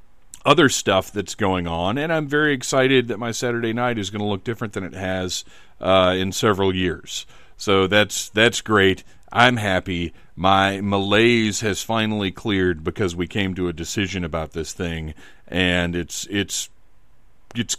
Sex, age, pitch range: male, 40-59, 95-115 Hz